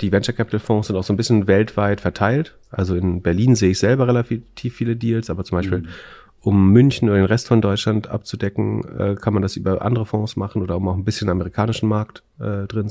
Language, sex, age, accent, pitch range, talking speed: German, male, 30-49, German, 95-115 Hz, 215 wpm